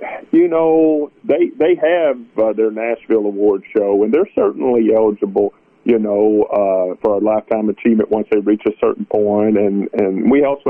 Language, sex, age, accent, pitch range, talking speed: English, male, 50-69, American, 105-130 Hz, 175 wpm